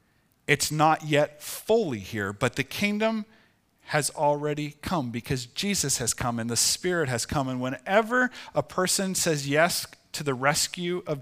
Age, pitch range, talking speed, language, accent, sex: 40-59, 130-185 Hz, 160 wpm, English, American, male